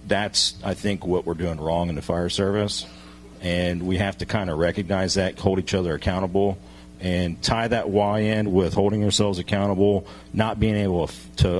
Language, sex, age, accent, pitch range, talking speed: English, male, 40-59, American, 90-110 Hz, 185 wpm